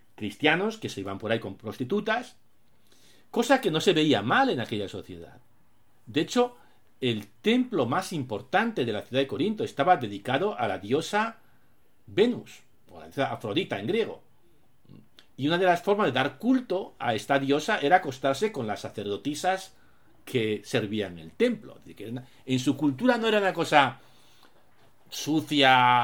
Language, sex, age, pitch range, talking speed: Spanish, male, 50-69, 110-175 Hz, 160 wpm